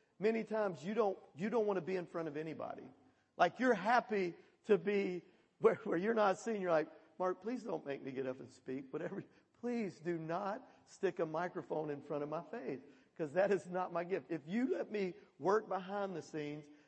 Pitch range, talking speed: 170-215 Hz, 215 wpm